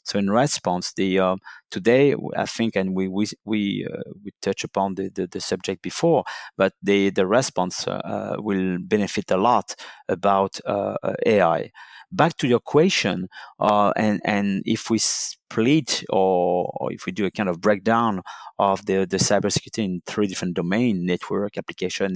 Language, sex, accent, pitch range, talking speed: English, male, French, 95-110 Hz, 170 wpm